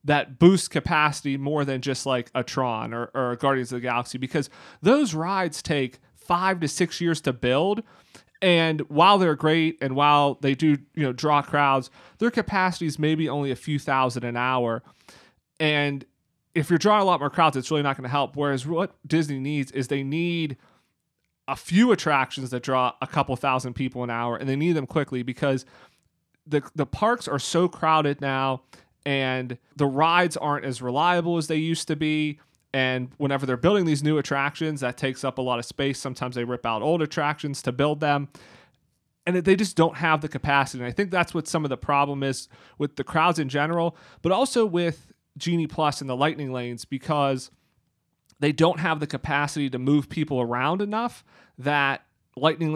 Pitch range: 135-160 Hz